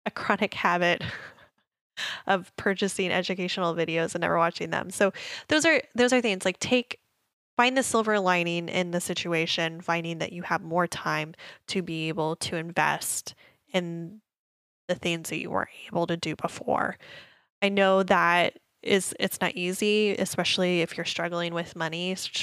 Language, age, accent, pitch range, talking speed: English, 10-29, American, 170-190 Hz, 160 wpm